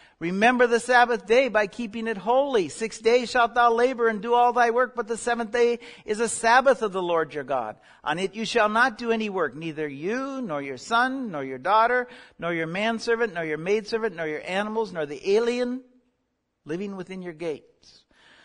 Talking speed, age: 200 wpm, 60-79